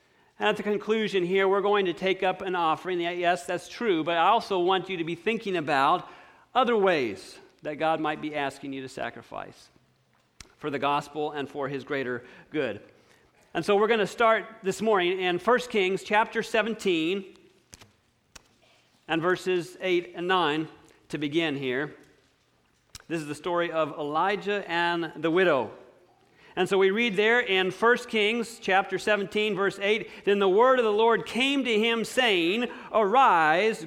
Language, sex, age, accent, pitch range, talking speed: English, male, 40-59, American, 170-220 Hz, 170 wpm